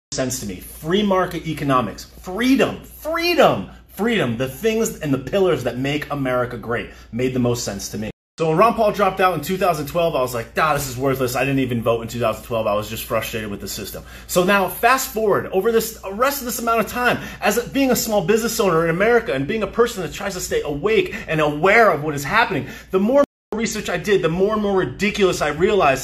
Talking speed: 225 wpm